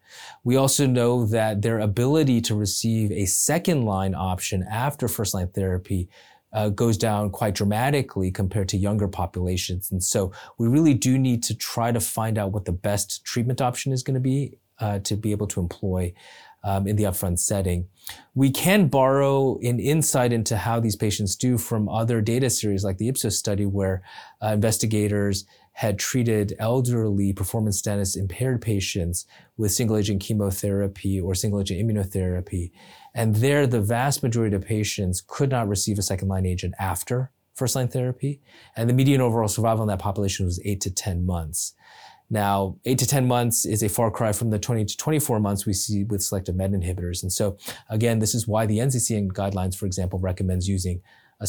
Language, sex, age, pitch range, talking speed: English, male, 30-49, 95-120 Hz, 175 wpm